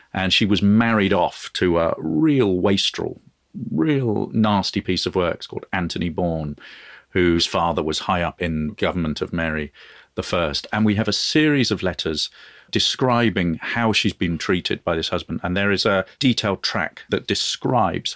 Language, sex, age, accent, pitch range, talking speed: English, male, 40-59, British, 95-125 Hz, 170 wpm